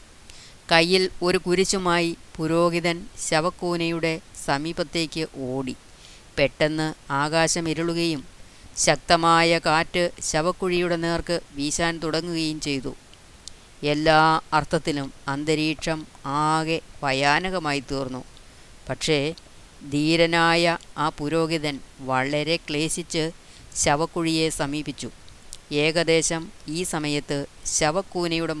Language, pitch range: Malayalam, 145-170 Hz